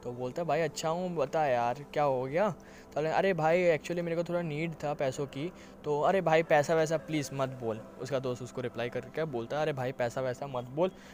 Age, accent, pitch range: 10-29, native, 125-145 Hz